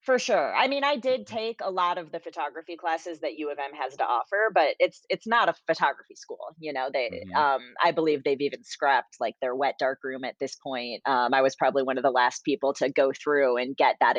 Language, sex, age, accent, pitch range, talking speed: English, female, 30-49, American, 145-185 Hz, 250 wpm